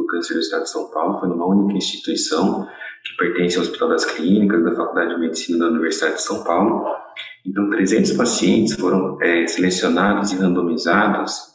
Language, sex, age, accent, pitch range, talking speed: Portuguese, male, 30-49, Brazilian, 90-105 Hz, 175 wpm